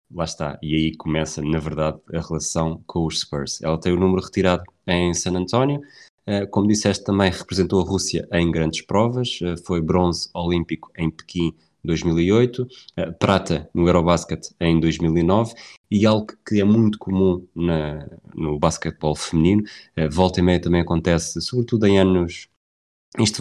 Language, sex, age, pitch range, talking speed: Portuguese, male, 20-39, 80-90 Hz, 150 wpm